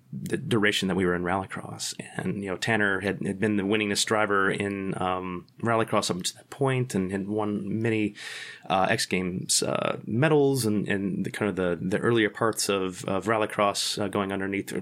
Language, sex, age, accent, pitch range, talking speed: English, male, 30-49, American, 95-110 Hz, 195 wpm